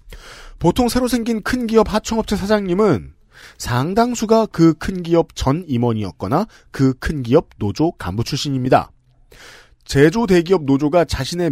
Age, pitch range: 40-59, 135-190 Hz